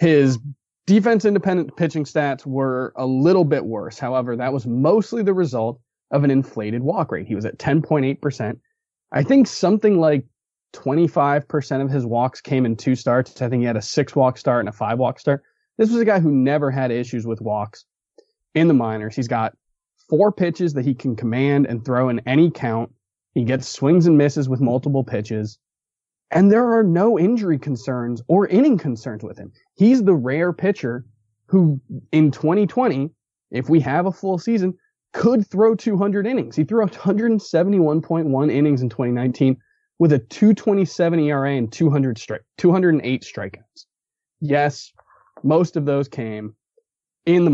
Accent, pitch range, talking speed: American, 130-185 Hz, 165 wpm